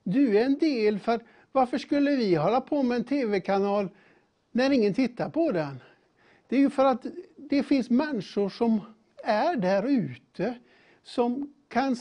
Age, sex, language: 60-79, male, Swedish